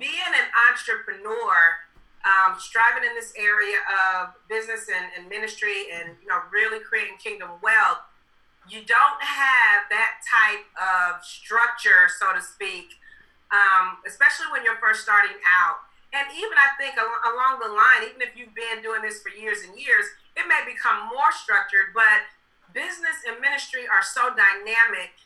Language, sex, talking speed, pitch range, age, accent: English, female, 150 wpm, 215-345 Hz, 40-59, American